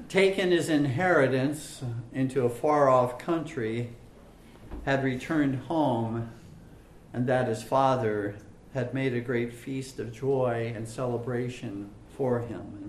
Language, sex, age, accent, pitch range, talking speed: English, male, 50-69, American, 115-155 Hz, 120 wpm